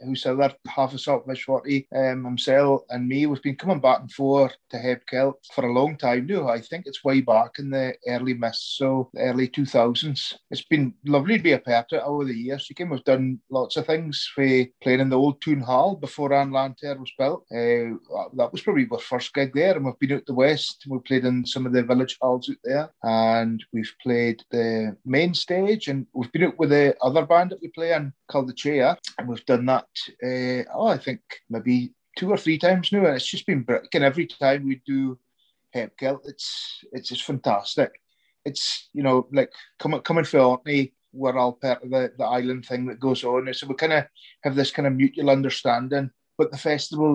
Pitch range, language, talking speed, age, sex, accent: 125-145 Hz, English, 220 wpm, 30-49, male, British